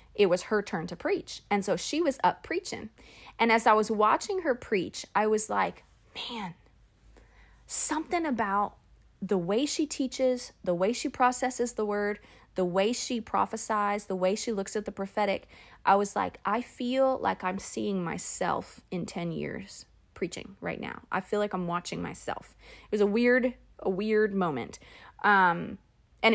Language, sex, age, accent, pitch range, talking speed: English, female, 30-49, American, 190-235 Hz, 175 wpm